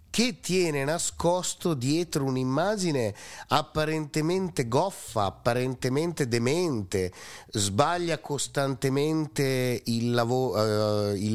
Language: Italian